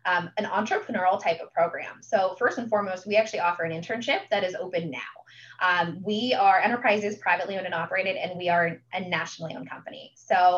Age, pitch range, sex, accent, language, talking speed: 20-39, 170-210 Hz, female, American, English, 200 wpm